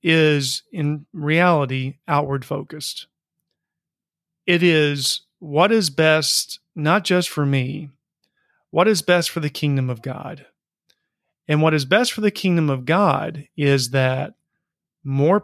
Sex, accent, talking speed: male, American, 130 wpm